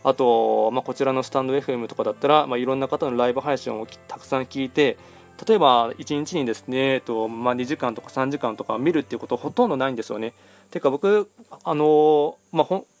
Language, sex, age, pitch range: Japanese, male, 20-39, 120-150 Hz